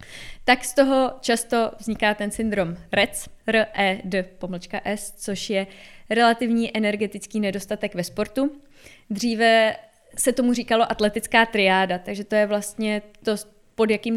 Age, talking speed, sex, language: 20-39, 120 wpm, female, Czech